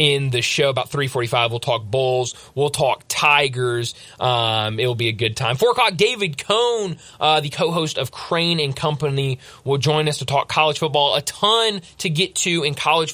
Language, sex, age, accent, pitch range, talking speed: English, male, 20-39, American, 130-170 Hz, 190 wpm